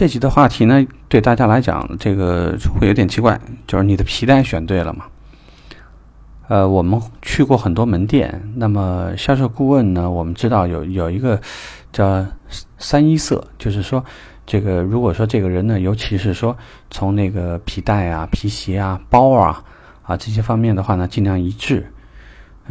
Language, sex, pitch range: Chinese, male, 90-120 Hz